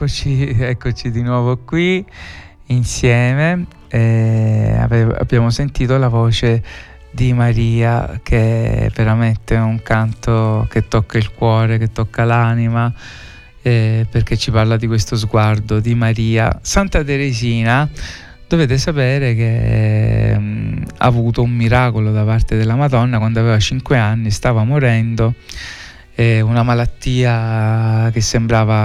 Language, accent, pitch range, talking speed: Italian, native, 110-125 Hz, 120 wpm